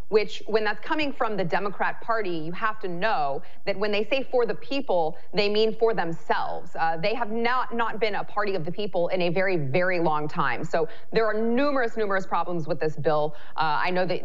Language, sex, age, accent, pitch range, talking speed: English, female, 30-49, American, 165-215 Hz, 225 wpm